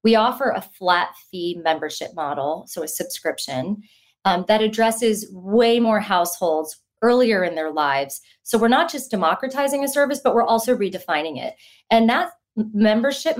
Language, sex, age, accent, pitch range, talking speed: English, female, 30-49, American, 180-240 Hz, 155 wpm